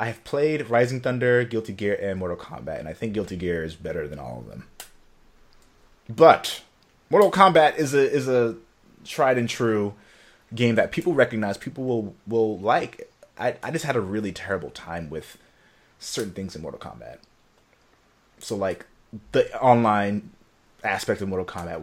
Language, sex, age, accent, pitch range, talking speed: English, male, 30-49, American, 95-120 Hz, 170 wpm